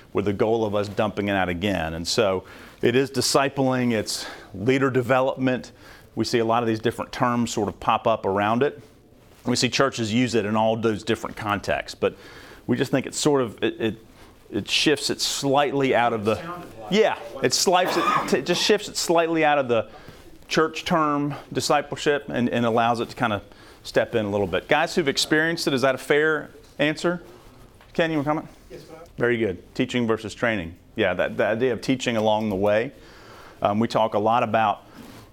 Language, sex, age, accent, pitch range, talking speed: English, male, 40-59, American, 110-130 Hz, 200 wpm